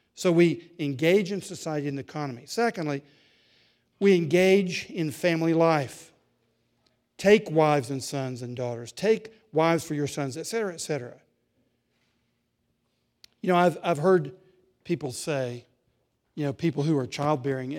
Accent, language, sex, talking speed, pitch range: American, English, male, 140 wpm, 145-200 Hz